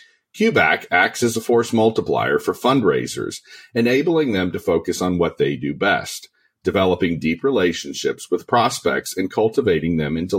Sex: male